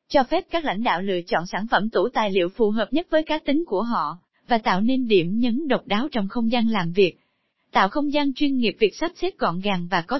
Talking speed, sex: 260 wpm, female